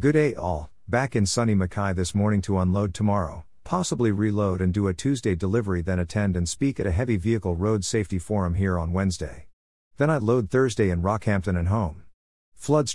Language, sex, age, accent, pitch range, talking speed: English, male, 50-69, American, 90-115 Hz, 195 wpm